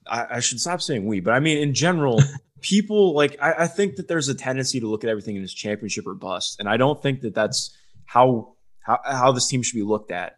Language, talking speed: English, 250 wpm